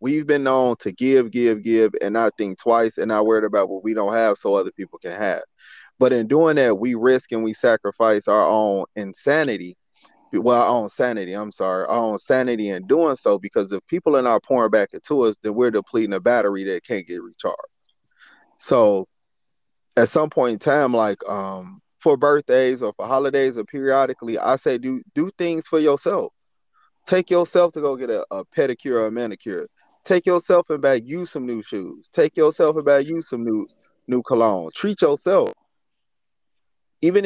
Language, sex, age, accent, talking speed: English, male, 20-39, American, 190 wpm